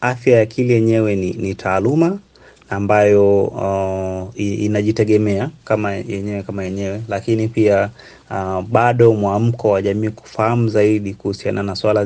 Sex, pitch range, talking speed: male, 100-120 Hz, 125 wpm